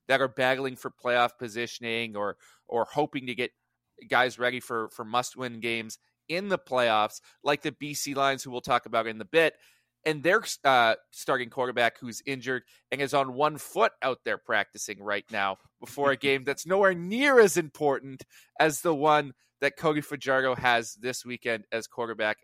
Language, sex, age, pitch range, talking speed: English, male, 30-49, 115-150 Hz, 180 wpm